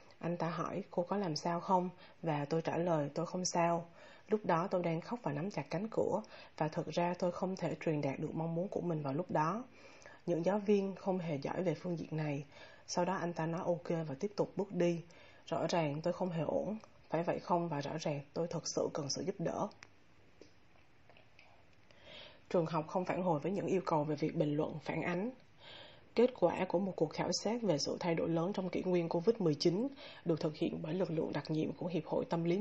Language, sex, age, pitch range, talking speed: Vietnamese, female, 20-39, 160-185 Hz, 230 wpm